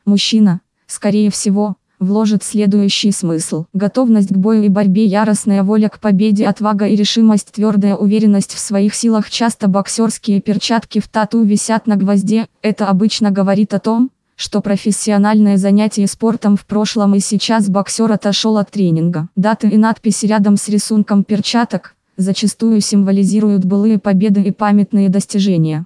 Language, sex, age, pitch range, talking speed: Russian, female, 20-39, 200-215 Hz, 145 wpm